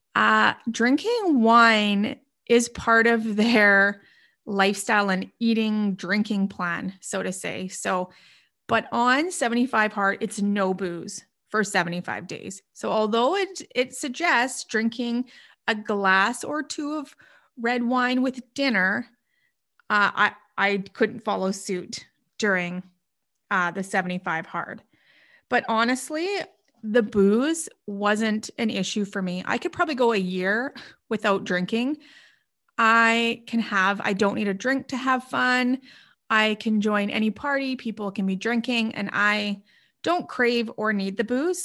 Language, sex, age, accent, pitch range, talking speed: English, female, 30-49, American, 200-245 Hz, 140 wpm